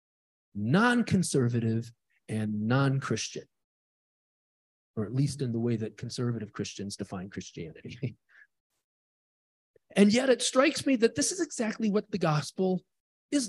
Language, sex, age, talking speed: English, male, 40-59, 120 wpm